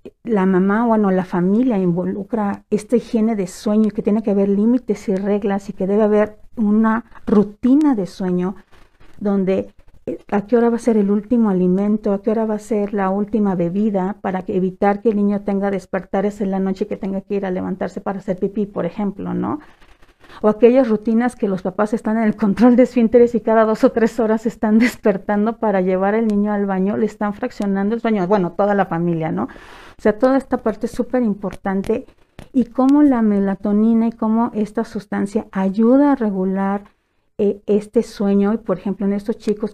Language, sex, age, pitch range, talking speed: Spanish, female, 50-69, 195-225 Hz, 200 wpm